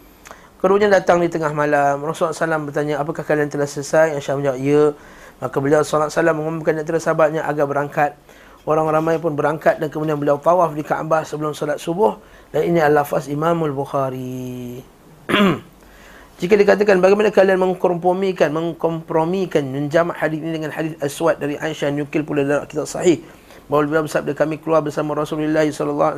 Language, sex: Malay, male